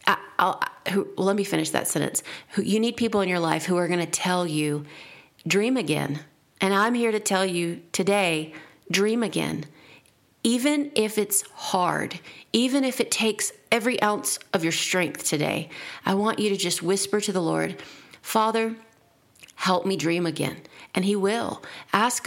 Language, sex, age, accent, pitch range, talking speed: English, female, 40-59, American, 175-220 Hz, 160 wpm